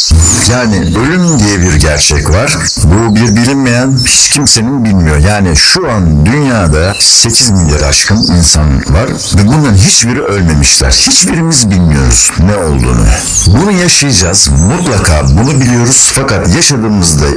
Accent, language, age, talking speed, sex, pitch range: native, Turkish, 60-79, 125 wpm, male, 75-110 Hz